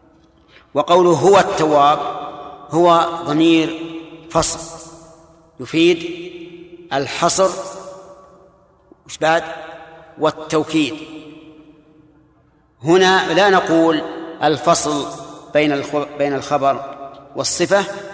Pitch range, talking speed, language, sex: 150-175 Hz, 60 wpm, Arabic, male